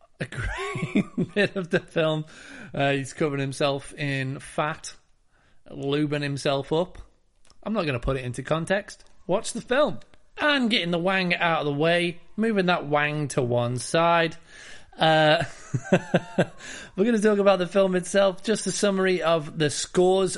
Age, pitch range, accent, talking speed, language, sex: 30-49, 140-180 Hz, British, 160 wpm, English, male